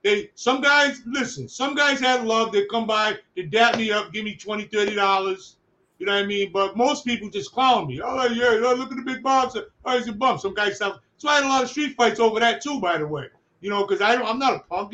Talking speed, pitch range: 260 wpm, 195-240 Hz